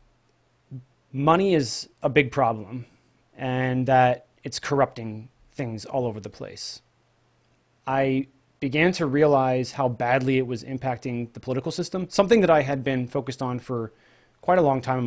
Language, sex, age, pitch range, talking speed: English, male, 30-49, 120-145 Hz, 155 wpm